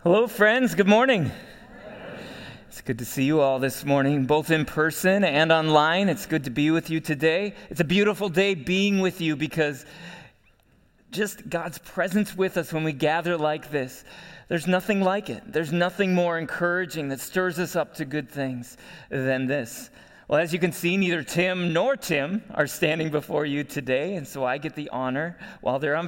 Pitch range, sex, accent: 145-190 Hz, male, American